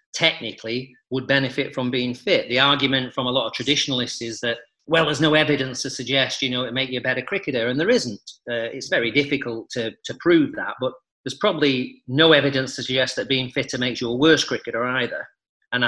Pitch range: 120-145 Hz